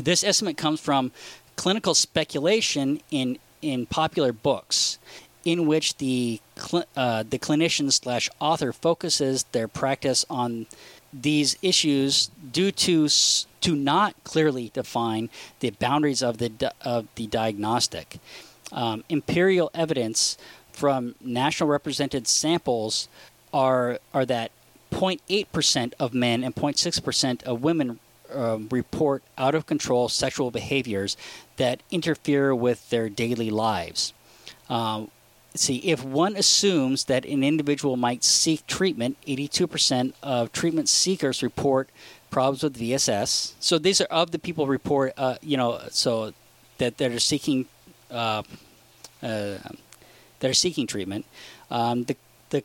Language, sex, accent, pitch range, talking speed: English, male, American, 120-155 Hz, 130 wpm